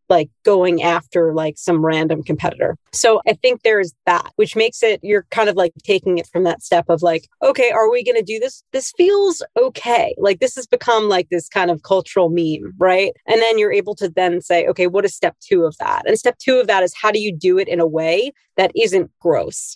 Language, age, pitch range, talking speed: English, 30-49, 175-230 Hz, 235 wpm